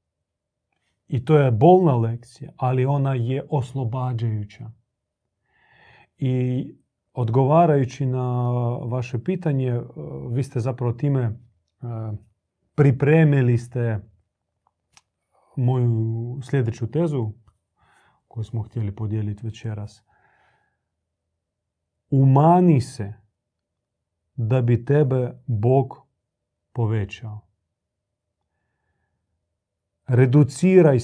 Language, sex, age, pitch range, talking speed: Croatian, male, 40-59, 105-140 Hz, 70 wpm